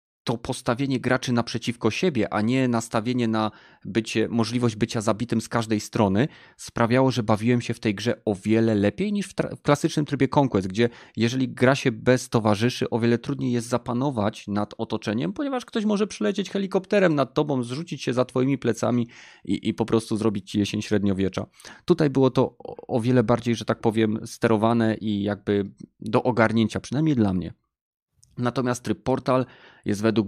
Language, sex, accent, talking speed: Polish, male, native, 170 wpm